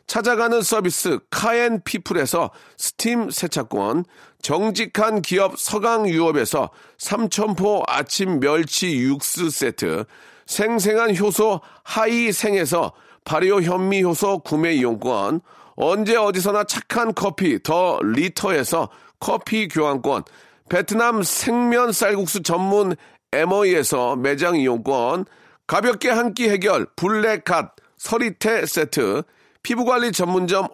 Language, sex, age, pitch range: Korean, male, 40-59, 180-225 Hz